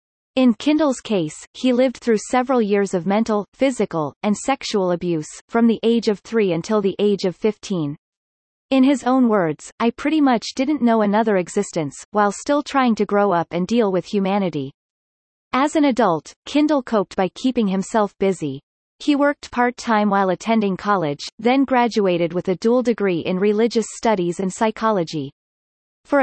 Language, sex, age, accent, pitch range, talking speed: English, female, 30-49, American, 185-245 Hz, 165 wpm